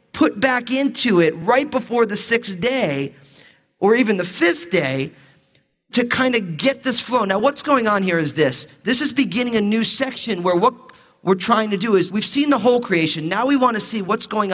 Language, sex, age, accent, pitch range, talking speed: English, male, 30-49, American, 150-235 Hz, 215 wpm